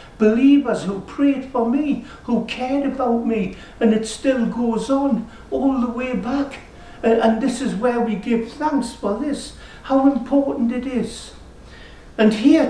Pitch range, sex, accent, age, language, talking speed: 220-275 Hz, male, British, 60-79, English, 155 wpm